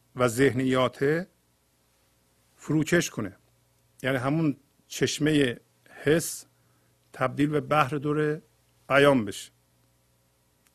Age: 50-69